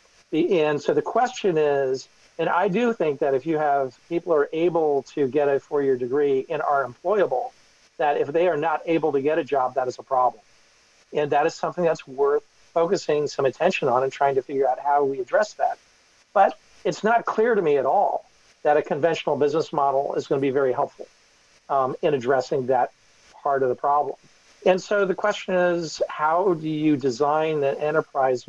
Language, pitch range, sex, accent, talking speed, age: English, 140-180 Hz, male, American, 200 wpm, 40-59